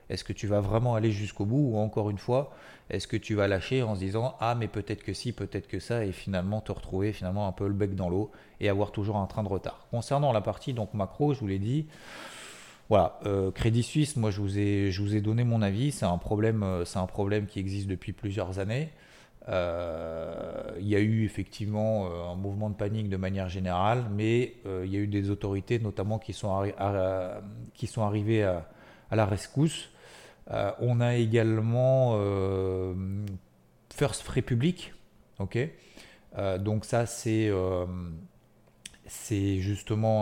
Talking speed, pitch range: 195 wpm, 95-115 Hz